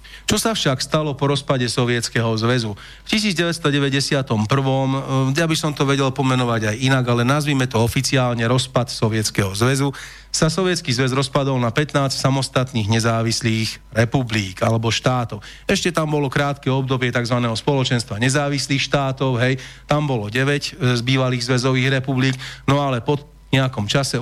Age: 40-59